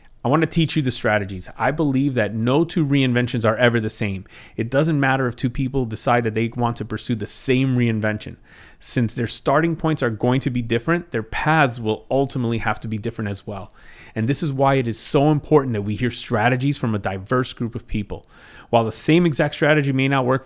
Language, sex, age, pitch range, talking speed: English, male, 30-49, 110-135 Hz, 225 wpm